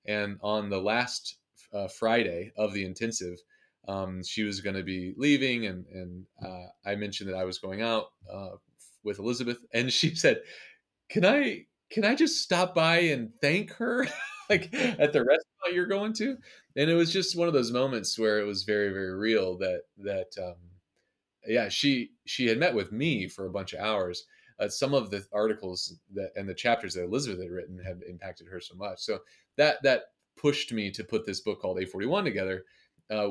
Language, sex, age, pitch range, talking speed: English, male, 30-49, 95-150 Hz, 200 wpm